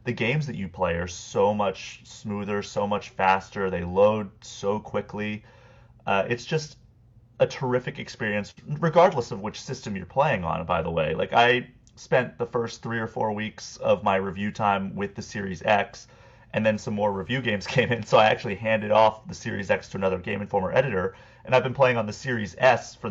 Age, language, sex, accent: 30-49, English, male, American